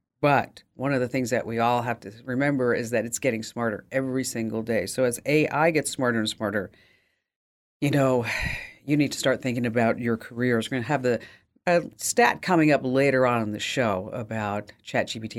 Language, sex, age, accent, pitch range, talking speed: English, female, 50-69, American, 115-145 Hz, 205 wpm